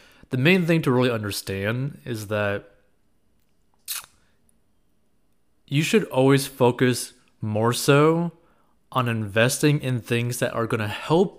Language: English